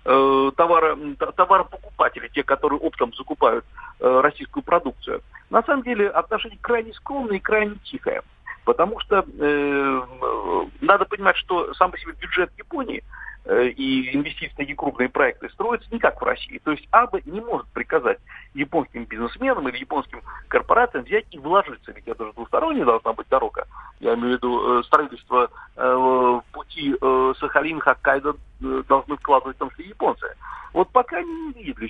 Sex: male